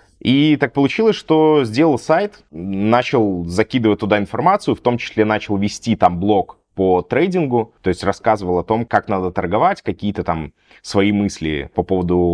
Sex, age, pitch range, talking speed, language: male, 20-39, 100-130 Hz, 160 wpm, Russian